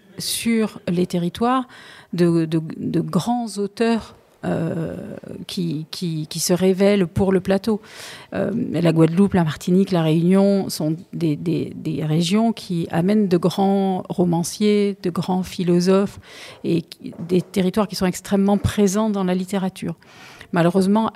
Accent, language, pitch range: French, French, 180-205 Hz